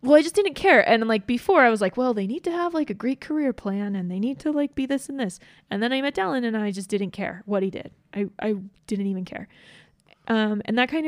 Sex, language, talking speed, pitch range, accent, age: female, English, 280 wpm, 190-255 Hz, American, 20-39